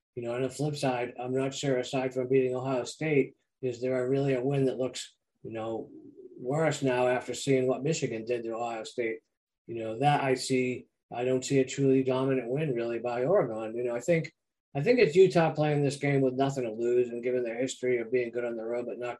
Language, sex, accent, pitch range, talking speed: English, male, American, 125-145 Hz, 240 wpm